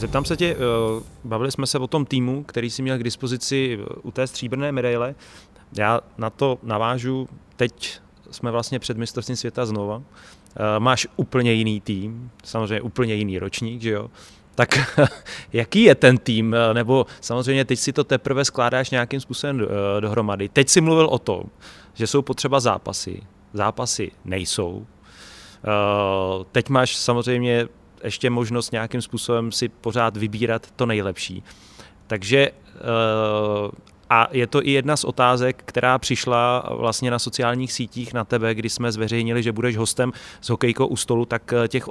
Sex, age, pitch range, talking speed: male, 30-49, 110-130 Hz, 150 wpm